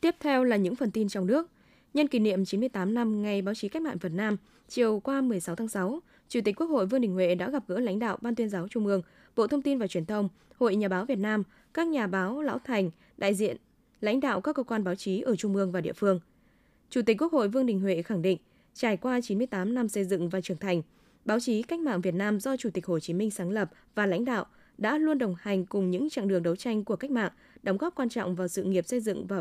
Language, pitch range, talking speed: Vietnamese, 190-255 Hz, 265 wpm